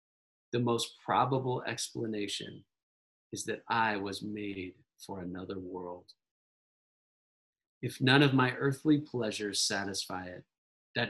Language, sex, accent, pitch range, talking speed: English, male, American, 110-160 Hz, 115 wpm